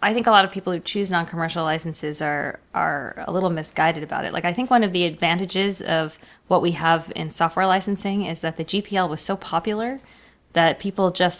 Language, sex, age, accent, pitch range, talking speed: English, female, 20-39, American, 160-185 Hz, 215 wpm